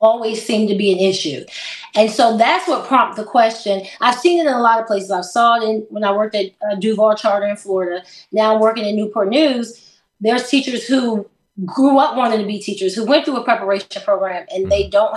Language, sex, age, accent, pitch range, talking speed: English, female, 20-39, American, 205-265 Hz, 225 wpm